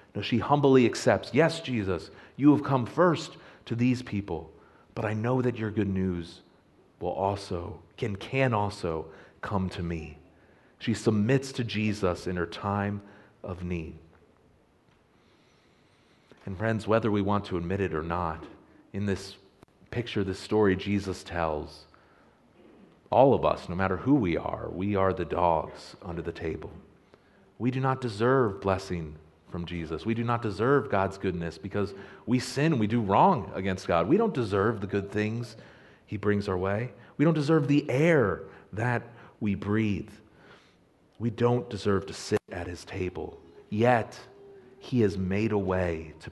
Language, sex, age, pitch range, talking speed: English, male, 40-59, 95-125 Hz, 160 wpm